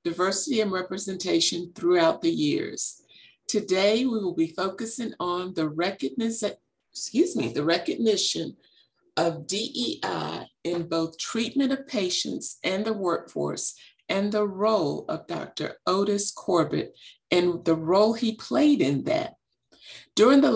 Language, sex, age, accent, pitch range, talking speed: English, female, 50-69, American, 170-225 Hz, 130 wpm